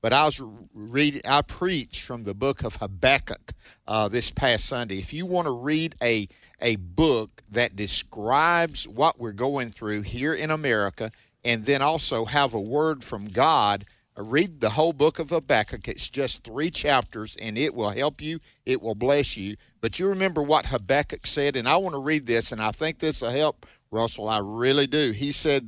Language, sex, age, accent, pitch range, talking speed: English, male, 50-69, American, 110-155 Hz, 195 wpm